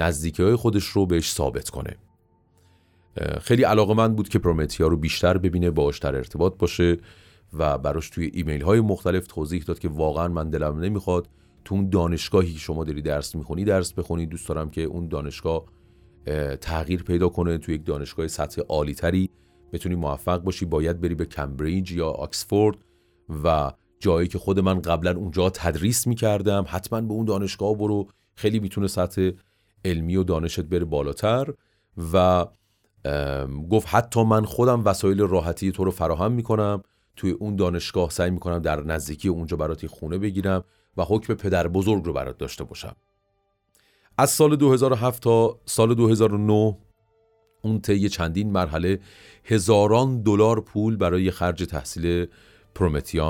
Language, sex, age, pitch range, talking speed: Persian, male, 30-49, 85-105 Hz, 145 wpm